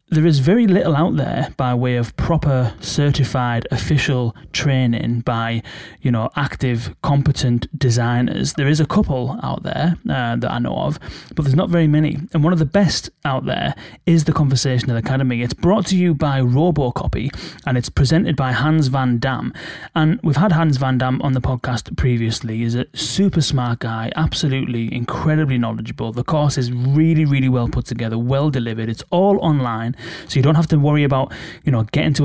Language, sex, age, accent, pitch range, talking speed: English, male, 30-49, British, 120-150 Hz, 190 wpm